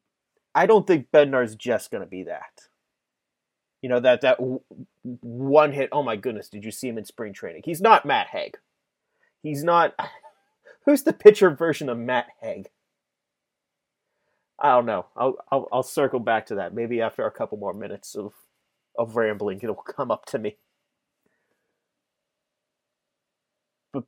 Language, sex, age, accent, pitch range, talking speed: English, male, 30-49, American, 135-190 Hz, 155 wpm